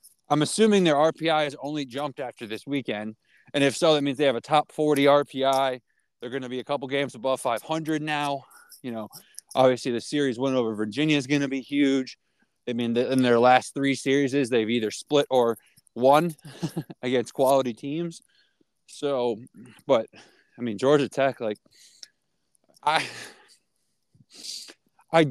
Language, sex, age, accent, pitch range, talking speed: English, male, 20-39, American, 130-165 Hz, 160 wpm